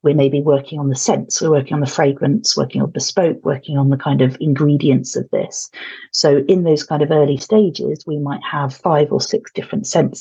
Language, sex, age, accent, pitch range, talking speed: English, female, 40-59, British, 140-195 Hz, 225 wpm